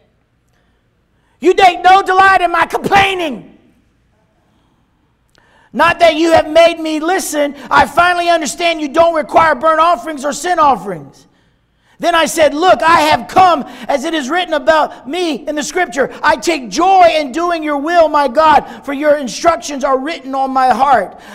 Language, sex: English, male